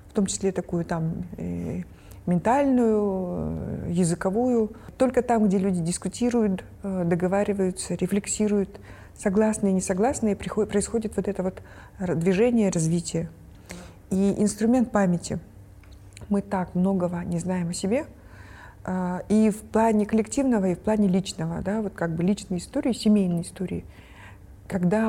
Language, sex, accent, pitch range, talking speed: Russian, female, native, 180-215 Hz, 115 wpm